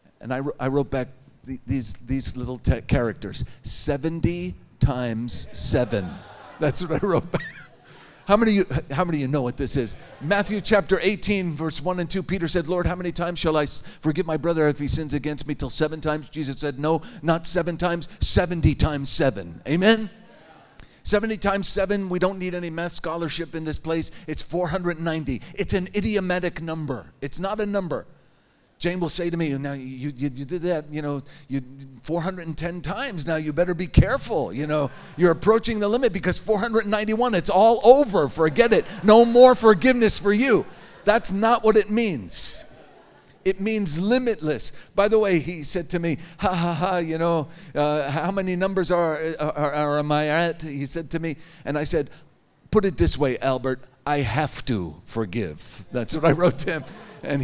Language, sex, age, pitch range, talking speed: English, male, 40-59, 145-190 Hz, 185 wpm